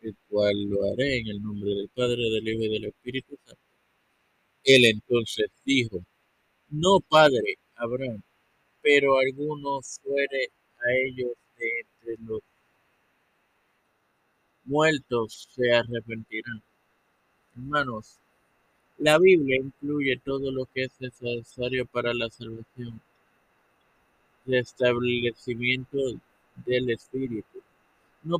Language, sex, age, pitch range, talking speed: Spanish, male, 50-69, 115-135 Hz, 105 wpm